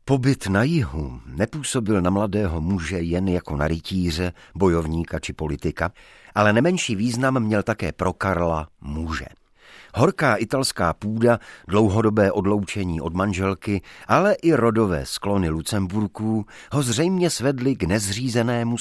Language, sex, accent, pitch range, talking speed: Czech, male, native, 90-120 Hz, 120 wpm